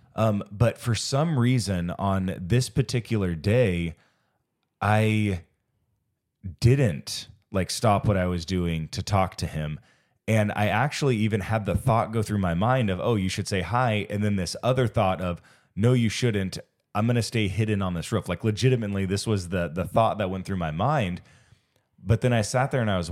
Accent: American